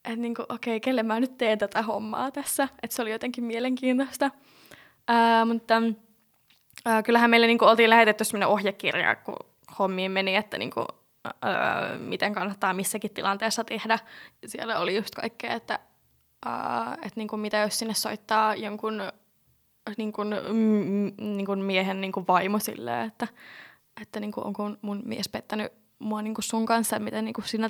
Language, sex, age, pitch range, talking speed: Finnish, female, 10-29, 205-235 Hz, 135 wpm